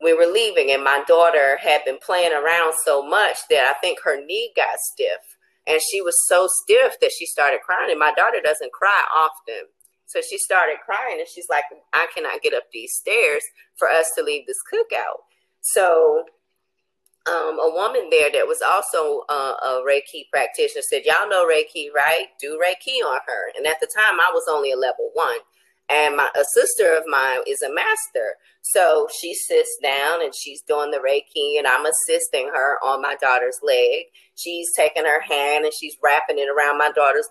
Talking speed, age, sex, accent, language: 195 wpm, 30-49, female, American, English